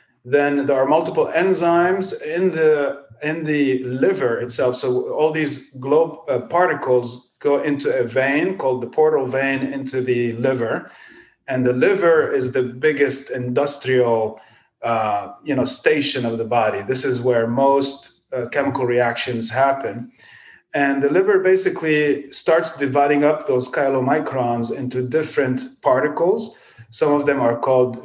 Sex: male